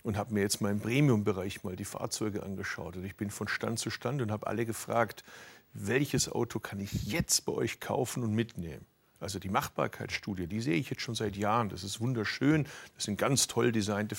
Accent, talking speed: German, 210 wpm